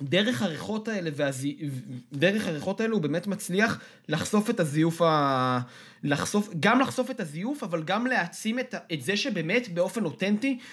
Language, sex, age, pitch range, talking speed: Hebrew, male, 20-39, 150-215 Hz, 150 wpm